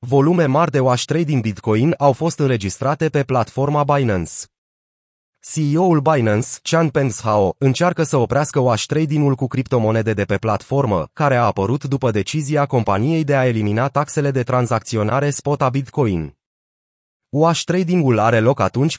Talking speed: 150 wpm